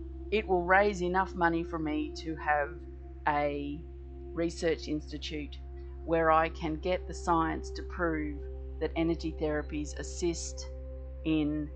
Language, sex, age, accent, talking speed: English, female, 40-59, Australian, 130 wpm